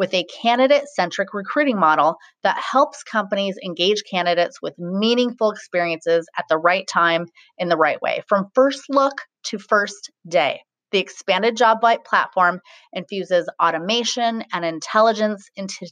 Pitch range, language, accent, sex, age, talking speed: 180-235 Hz, English, American, female, 30-49, 135 wpm